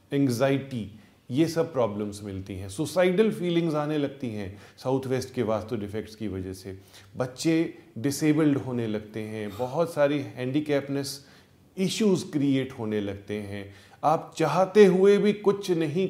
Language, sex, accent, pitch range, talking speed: Hindi, male, native, 110-160 Hz, 145 wpm